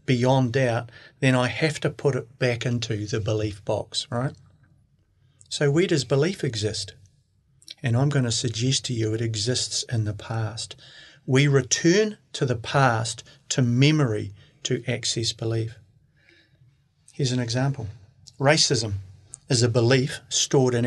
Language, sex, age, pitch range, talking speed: English, male, 40-59, 115-140 Hz, 145 wpm